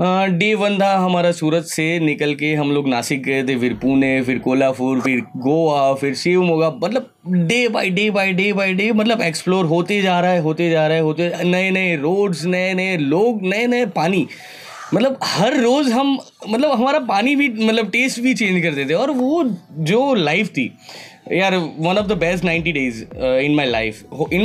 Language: Hindi